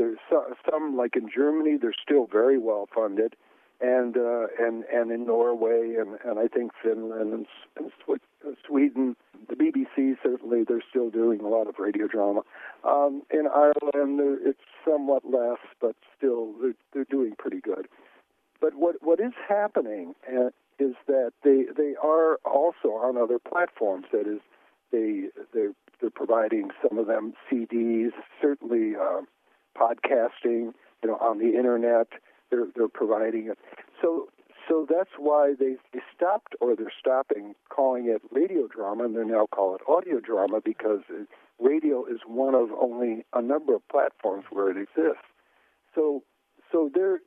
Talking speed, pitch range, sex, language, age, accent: 155 wpm, 115-170 Hz, male, English, 60-79, American